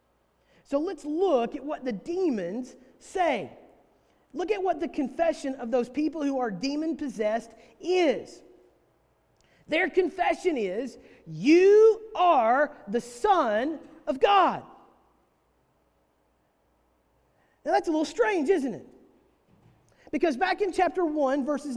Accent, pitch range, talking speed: American, 270-350 Hz, 115 wpm